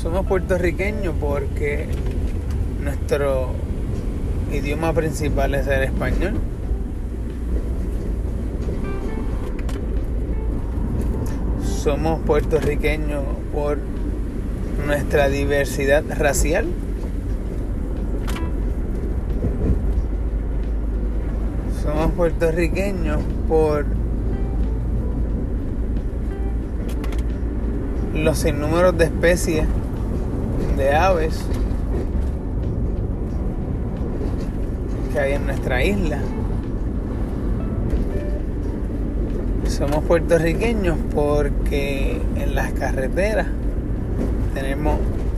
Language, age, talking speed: Spanish, 30-49, 50 wpm